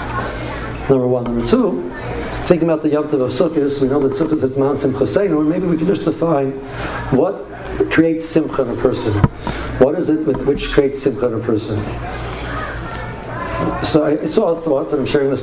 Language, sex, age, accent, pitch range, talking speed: English, male, 60-79, American, 130-150 Hz, 185 wpm